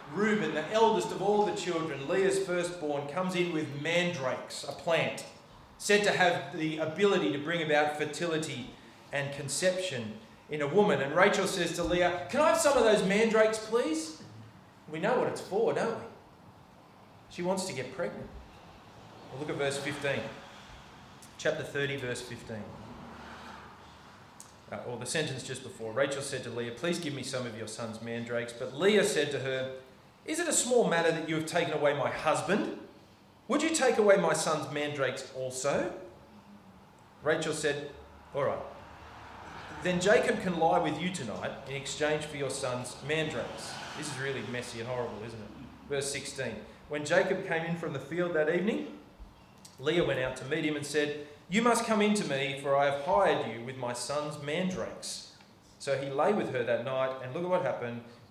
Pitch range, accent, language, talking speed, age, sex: 130-180 Hz, Australian, English, 180 wpm, 30-49, male